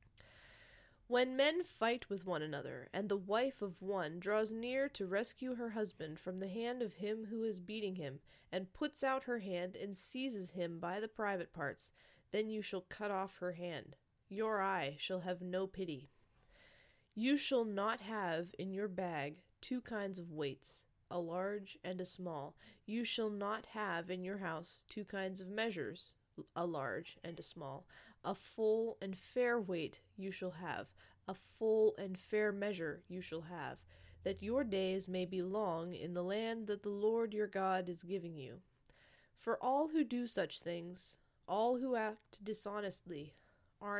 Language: English